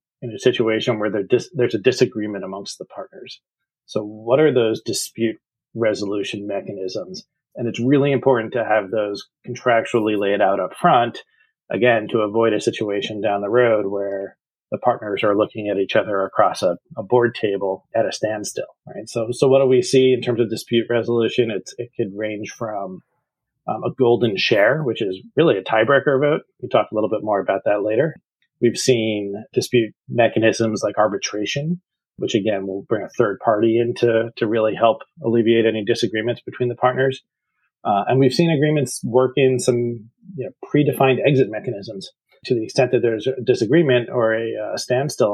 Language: English